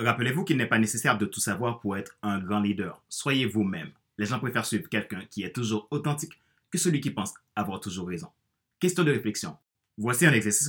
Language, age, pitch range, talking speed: French, 30-49, 105-145 Hz, 210 wpm